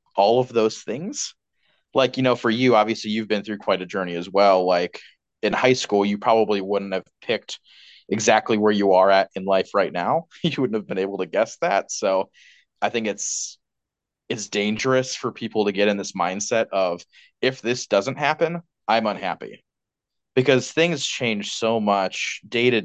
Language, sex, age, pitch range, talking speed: English, male, 20-39, 100-125 Hz, 185 wpm